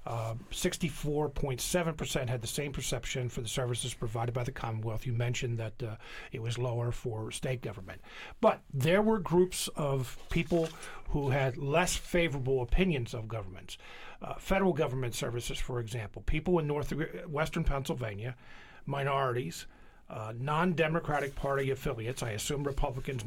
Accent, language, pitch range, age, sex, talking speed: American, English, 125-175 Hz, 50-69, male, 140 wpm